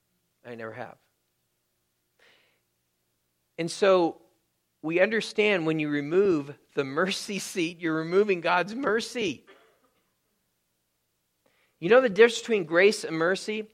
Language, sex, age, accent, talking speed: English, male, 40-59, American, 110 wpm